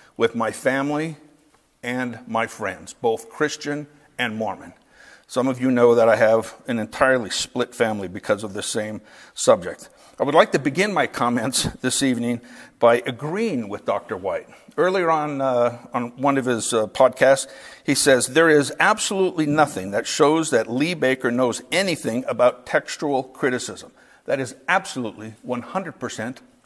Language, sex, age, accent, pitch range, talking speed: English, male, 50-69, American, 130-185 Hz, 155 wpm